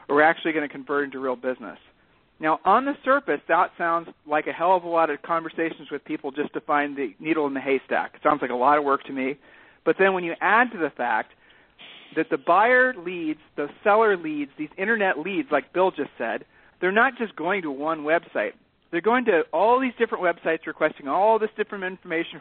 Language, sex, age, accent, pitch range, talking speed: English, male, 40-59, American, 145-205 Hz, 220 wpm